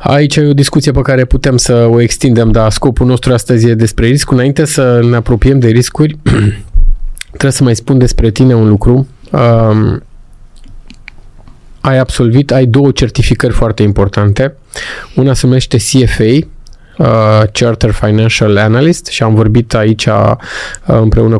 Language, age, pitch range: Romanian, 20-39, 110-135 Hz